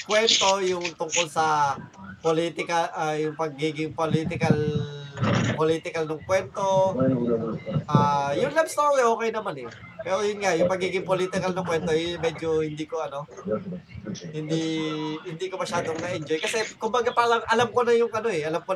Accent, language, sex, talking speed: native, Filipino, male, 165 wpm